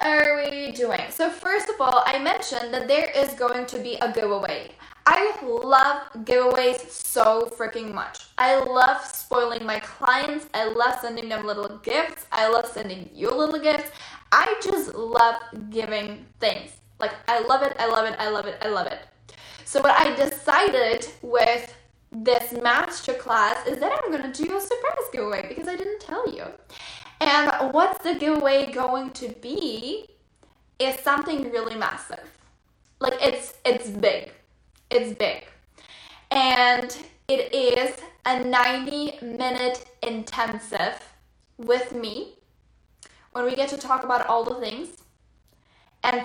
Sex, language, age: female, English, 10-29